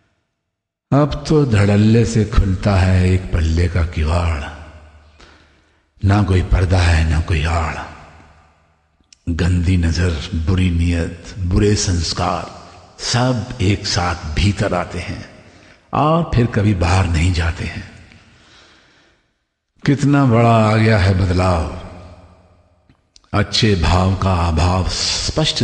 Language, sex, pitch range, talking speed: Hindi, male, 90-110 Hz, 110 wpm